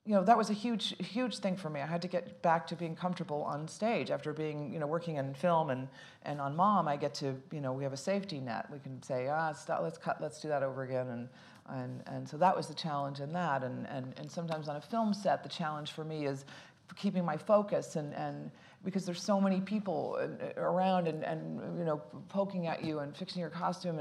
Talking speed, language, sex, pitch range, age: 245 wpm, English, female, 130-170 Hz, 40-59